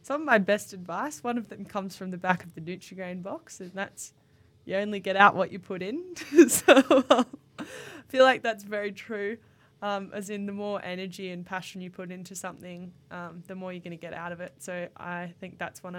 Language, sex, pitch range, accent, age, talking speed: English, female, 175-205 Hz, Australian, 10-29, 230 wpm